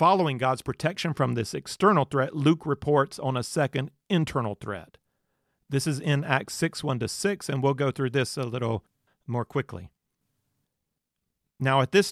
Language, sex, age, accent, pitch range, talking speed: English, male, 40-59, American, 115-140 Hz, 160 wpm